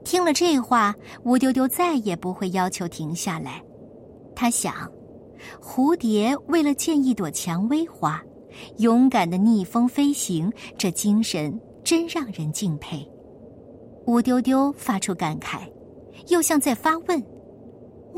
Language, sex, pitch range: Chinese, male, 195-310 Hz